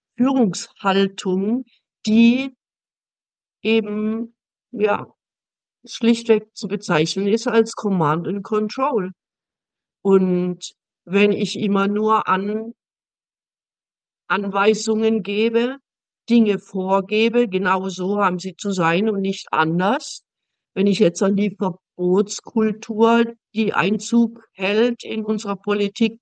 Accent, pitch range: German, 185-225 Hz